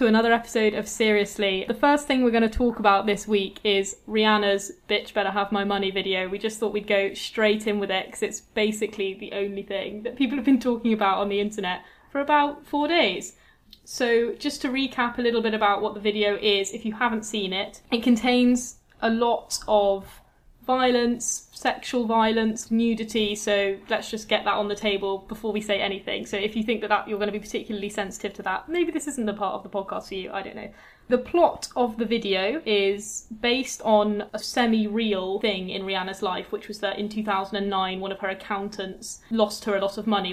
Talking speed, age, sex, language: 215 wpm, 10-29, female, English